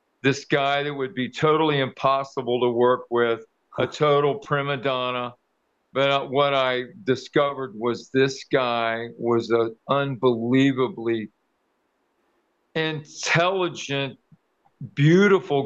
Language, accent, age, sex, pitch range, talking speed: English, American, 50-69, male, 120-140 Hz, 100 wpm